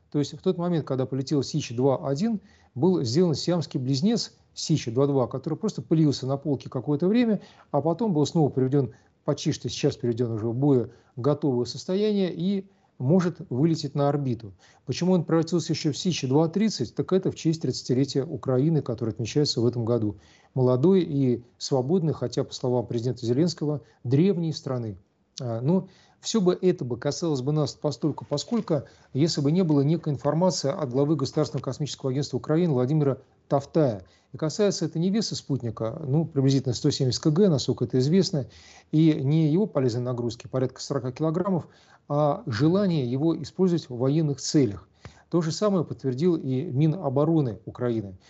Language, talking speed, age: Russian, 160 wpm, 40-59